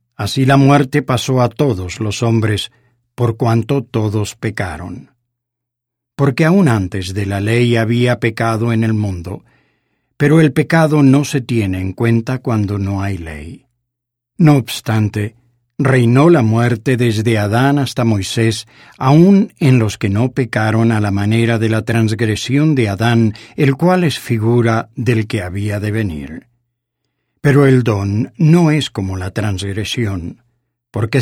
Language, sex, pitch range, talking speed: English, male, 110-135 Hz, 145 wpm